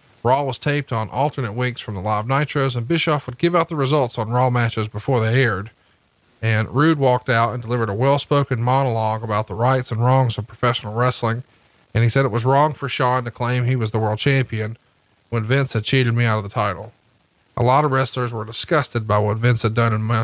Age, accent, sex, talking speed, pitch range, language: 40-59, American, male, 225 wpm, 110-135 Hz, English